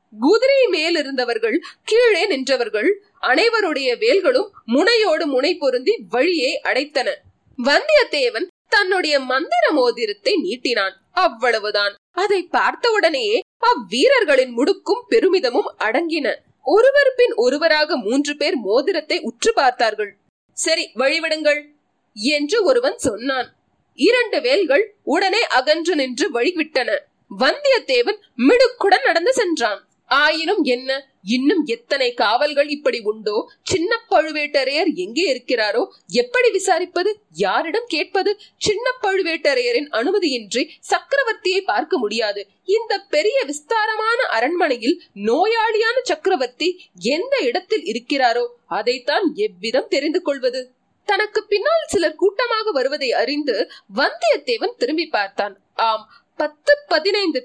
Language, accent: Tamil, native